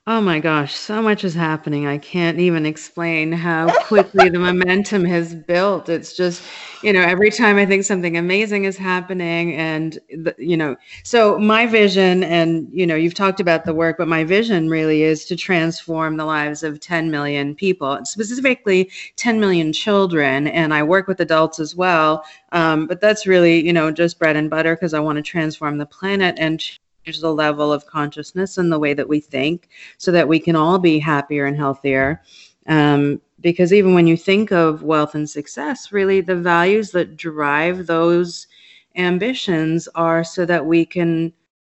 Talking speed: 185 wpm